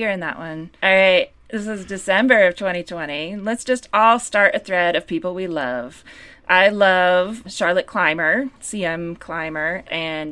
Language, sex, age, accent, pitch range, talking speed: English, female, 20-39, American, 170-220 Hz, 165 wpm